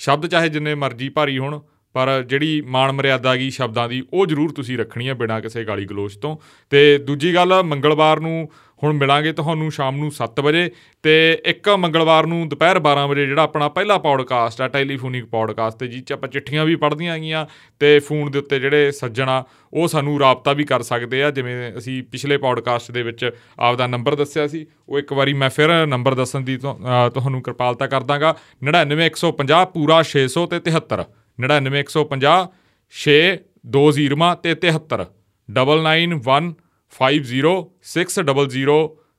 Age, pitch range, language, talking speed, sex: 30-49, 130-155 Hz, Punjabi, 145 wpm, male